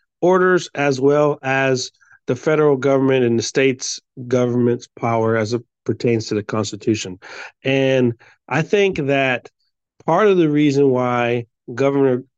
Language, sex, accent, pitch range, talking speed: English, male, American, 120-135 Hz, 135 wpm